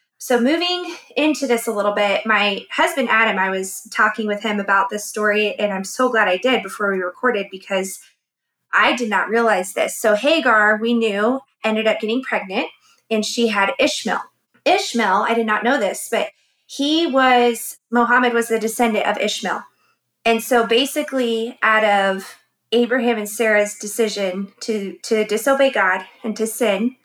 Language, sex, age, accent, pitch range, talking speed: English, female, 20-39, American, 210-245 Hz, 170 wpm